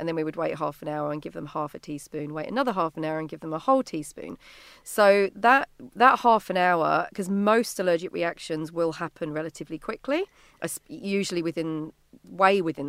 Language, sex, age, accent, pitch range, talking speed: English, female, 40-59, British, 155-200 Hz, 200 wpm